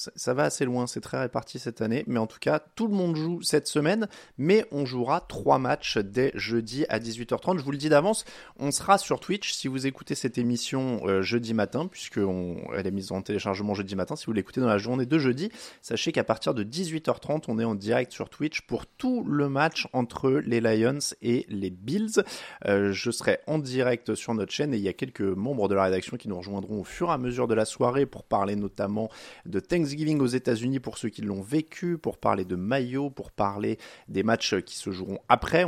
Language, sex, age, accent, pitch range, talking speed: French, male, 30-49, French, 105-150 Hz, 225 wpm